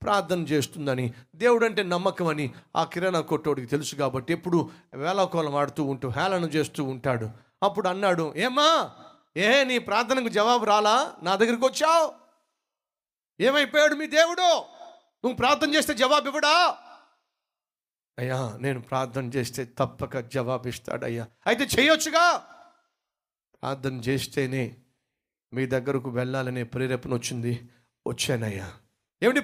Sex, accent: male, native